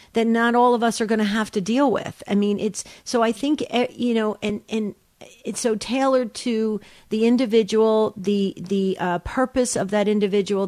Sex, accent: female, American